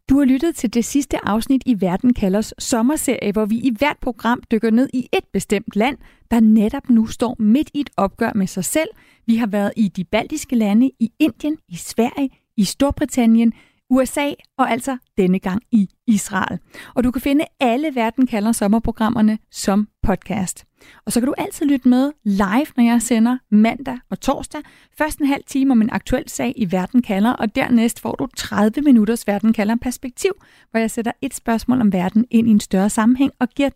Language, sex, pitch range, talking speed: Danish, female, 215-265 Hz, 195 wpm